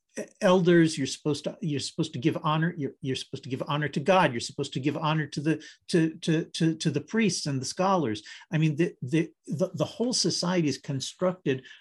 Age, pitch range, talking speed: 50-69, 150-185 Hz, 220 wpm